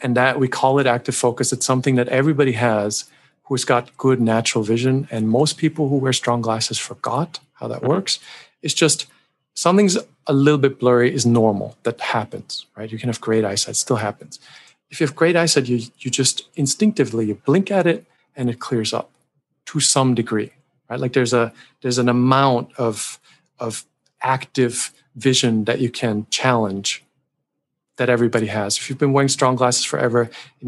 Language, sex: English, male